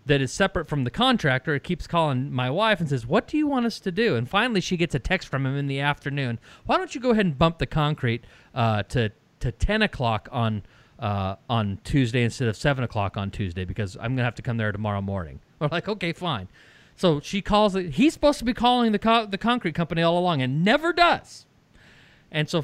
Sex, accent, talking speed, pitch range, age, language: male, American, 235 wpm, 125-195 Hz, 30-49, English